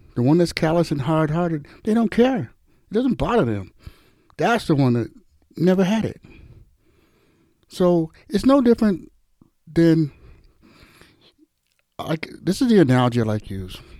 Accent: American